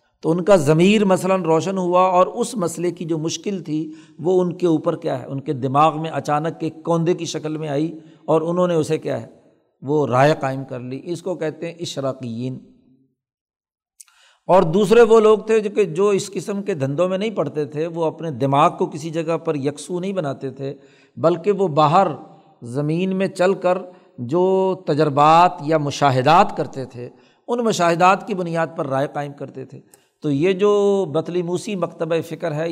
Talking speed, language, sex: 190 wpm, Urdu, male